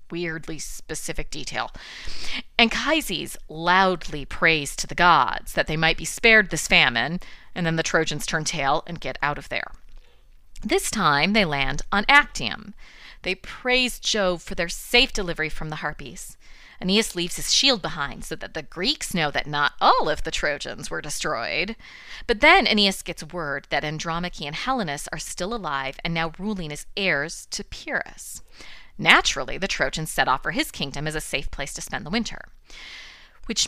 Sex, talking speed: female, 175 wpm